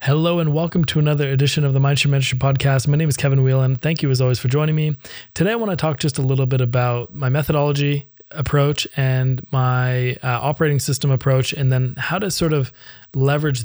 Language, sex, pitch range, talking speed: English, male, 120-140 Hz, 215 wpm